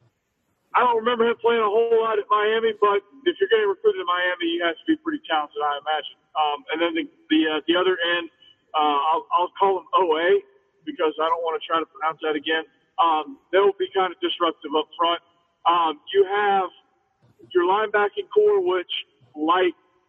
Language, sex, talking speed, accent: English, male, 200 wpm, American